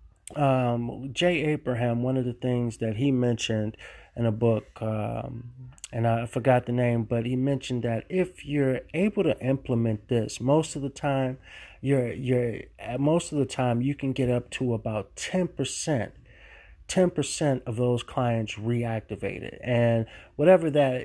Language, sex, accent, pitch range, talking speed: English, male, American, 115-140 Hz, 160 wpm